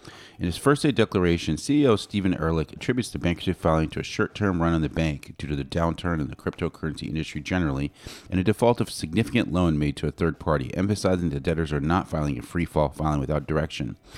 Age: 40-59